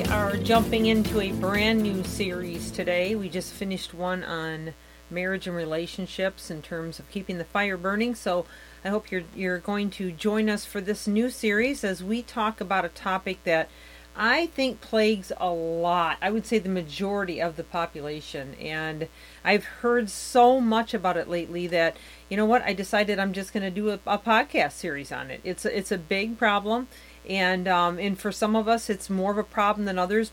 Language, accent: English, American